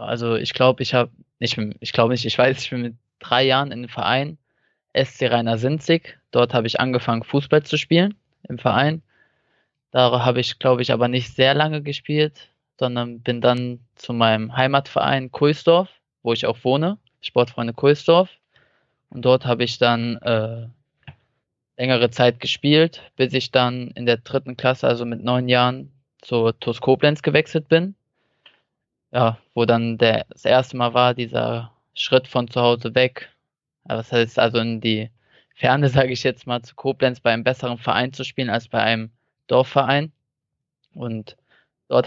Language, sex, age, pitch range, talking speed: German, male, 20-39, 120-140 Hz, 165 wpm